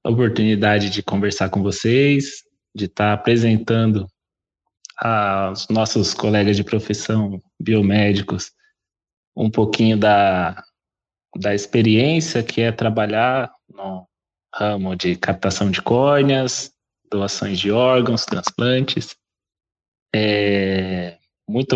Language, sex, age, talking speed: Portuguese, male, 20-39, 90 wpm